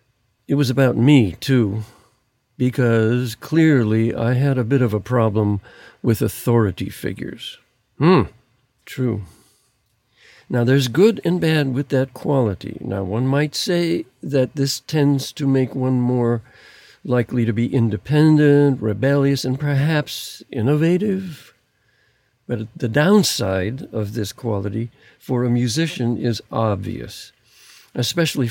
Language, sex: English, male